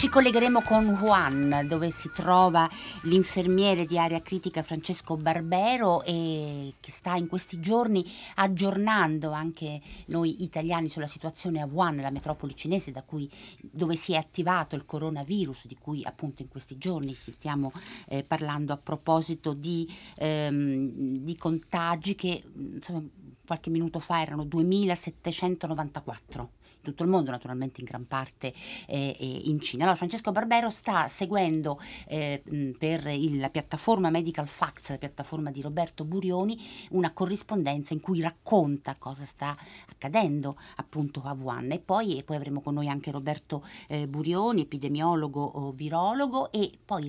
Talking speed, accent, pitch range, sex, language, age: 140 wpm, native, 145-180 Hz, female, Italian, 50-69